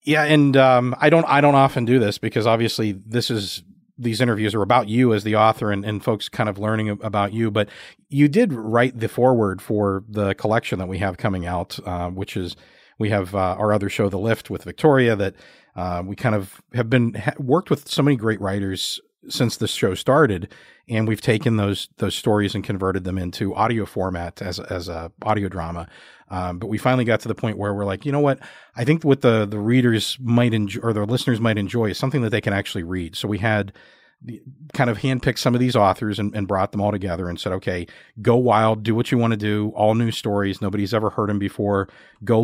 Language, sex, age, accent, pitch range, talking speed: English, male, 40-59, American, 95-115 Hz, 230 wpm